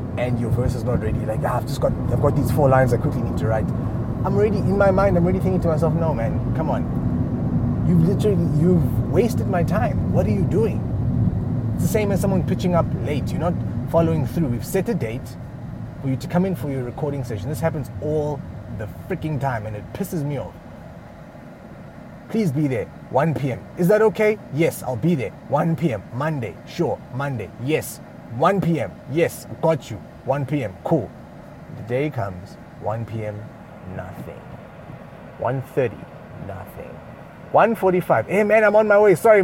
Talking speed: 185 wpm